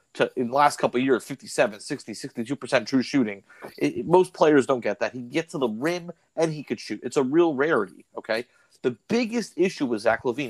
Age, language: 30-49, English